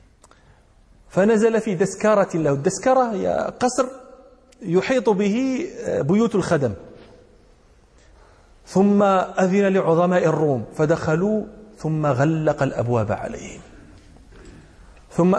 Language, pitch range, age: Arabic, 125-180 Hz, 40-59